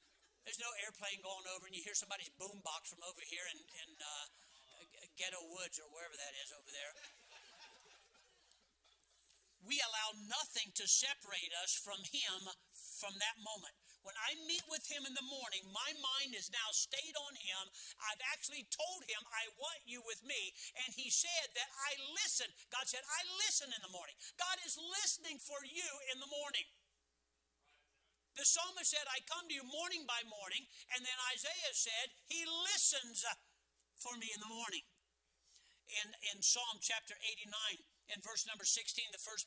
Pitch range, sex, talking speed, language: 195-275 Hz, male, 170 wpm, English